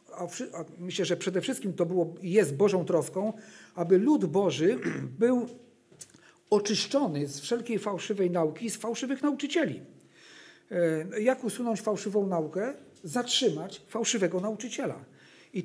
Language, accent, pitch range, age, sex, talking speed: Polish, native, 175-220 Hz, 50-69, male, 110 wpm